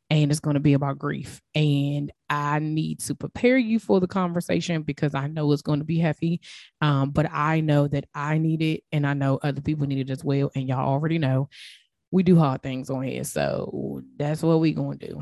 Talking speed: 230 wpm